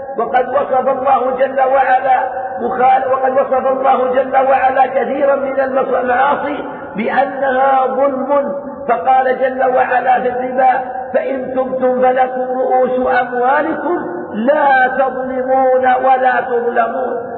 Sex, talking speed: male, 105 wpm